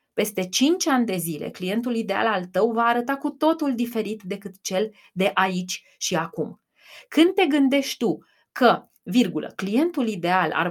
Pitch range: 195-250 Hz